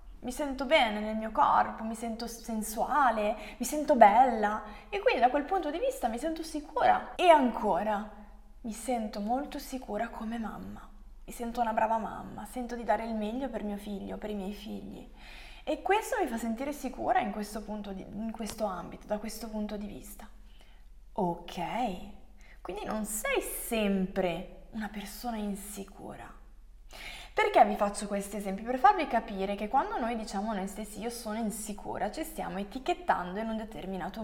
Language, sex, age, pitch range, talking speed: Italian, female, 20-39, 205-275 Hz, 170 wpm